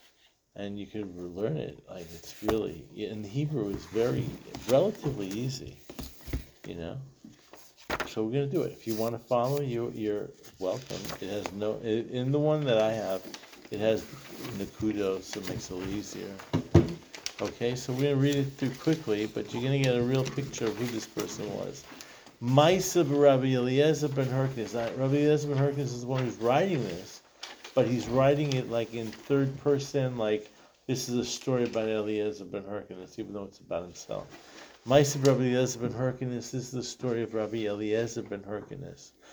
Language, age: English, 50-69